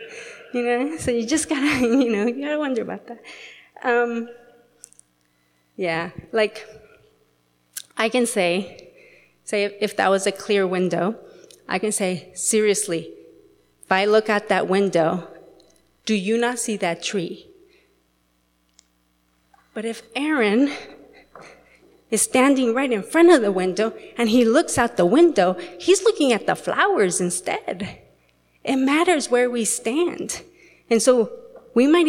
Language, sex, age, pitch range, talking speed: English, female, 30-49, 180-255 Hz, 145 wpm